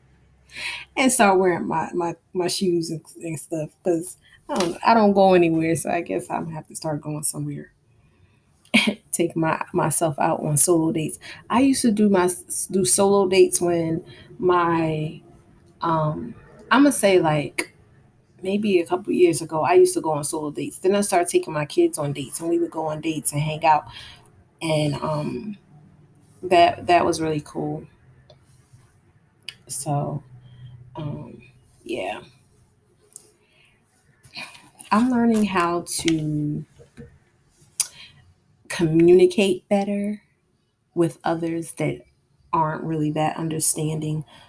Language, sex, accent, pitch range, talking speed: English, female, American, 150-180 Hz, 135 wpm